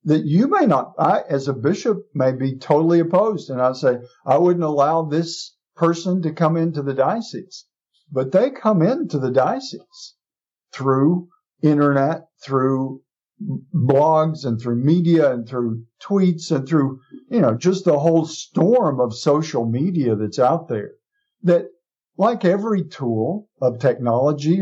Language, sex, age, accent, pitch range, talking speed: English, male, 50-69, American, 135-175 Hz, 150 wpm